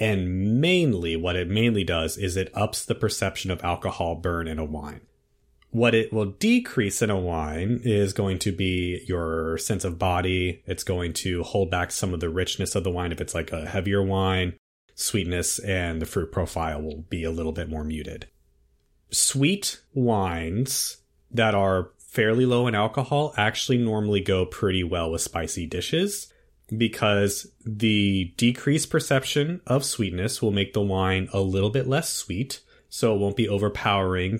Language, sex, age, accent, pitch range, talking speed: English, male, 30-49, American, 90-110 Hz, 170 wpm